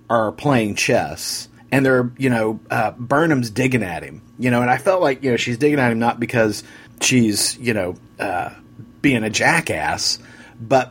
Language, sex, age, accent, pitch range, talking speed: English, male, 40-59, American, 110-130 Hz, 185 wpm